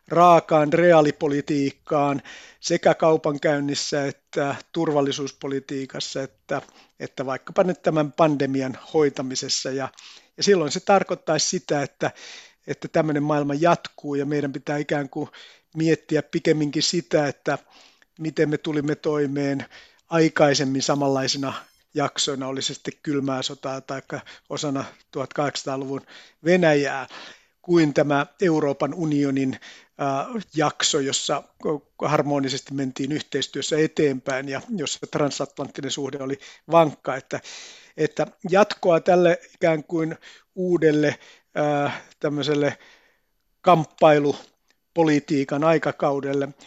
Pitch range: 140-160 Hz